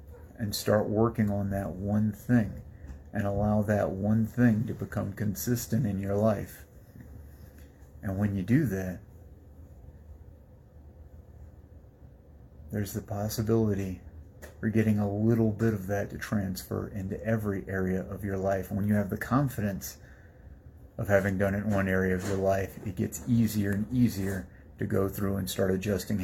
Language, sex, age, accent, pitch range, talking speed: English, male, 30-49, American, 85-105 Hz, 155 wpm